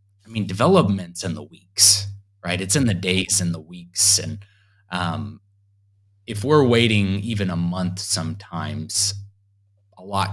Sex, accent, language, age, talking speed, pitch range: male, American, English, 30-49, 145 wpm, 95-105 Hz